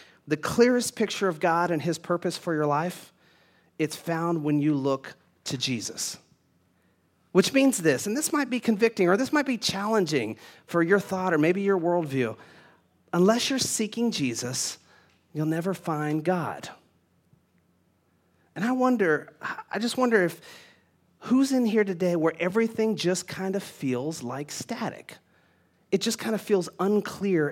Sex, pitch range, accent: male, 150-195 Hz, American